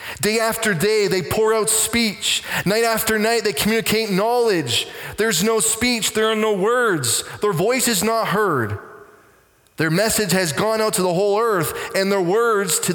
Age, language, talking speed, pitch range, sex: 20-39, English, 175 wpm, 160-220 Hz, male